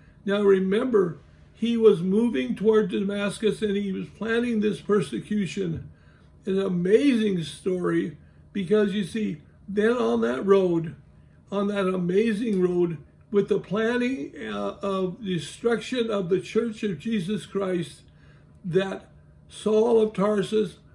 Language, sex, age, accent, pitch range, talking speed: English, male, 60-79, American, 190-220 Hz, 125 wpm